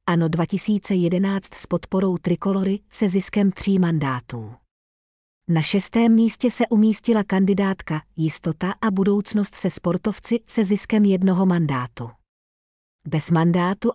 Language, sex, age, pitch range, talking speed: Czech, female, 40-59, 165-210 Hz, 110 wpm